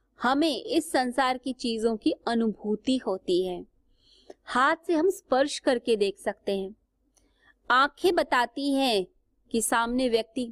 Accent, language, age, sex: native, Hindi, 30-49, female